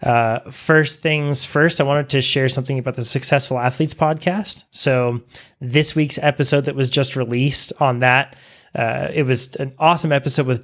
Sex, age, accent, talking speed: male, 20-39, American, 175 wpm